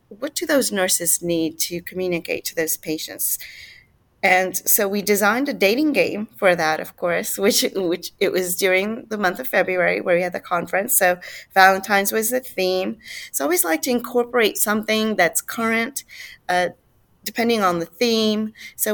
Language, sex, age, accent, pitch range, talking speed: English, female, 30-49, American, 180-220 Hz, 175 wpm